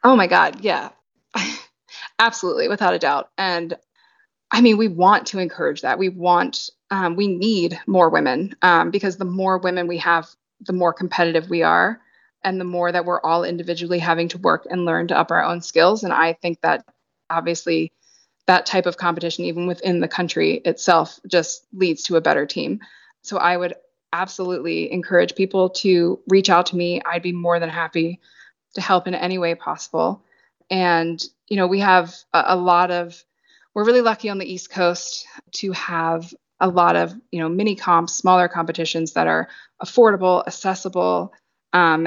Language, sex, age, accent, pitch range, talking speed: English, female, 20-39, American, 170-195 Hz, 180 wpm